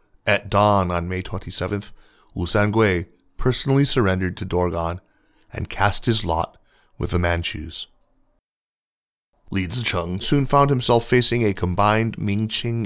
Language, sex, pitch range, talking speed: English, male, 90-110 Hz, 125 wpm